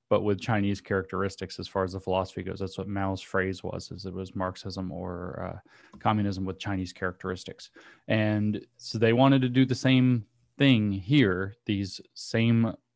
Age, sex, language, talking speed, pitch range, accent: 30-49, male, English, 170 wpm, 100-120 Hz, American